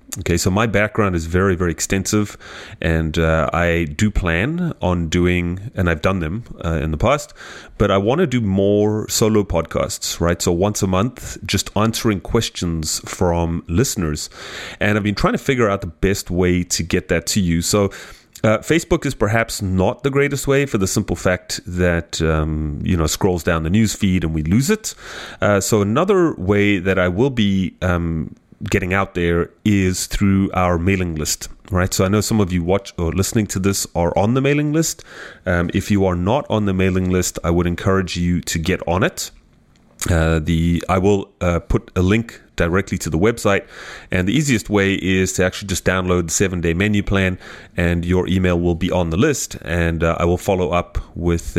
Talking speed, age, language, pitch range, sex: 200 wpm, 30-49, English, 85-105 Hz, male